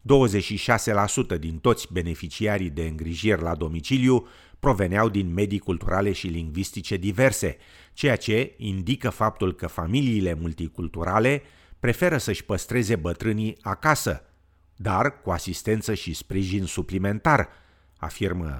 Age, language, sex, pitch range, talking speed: 50-69, Romanian, male, 85-110 Hz, 105 wpm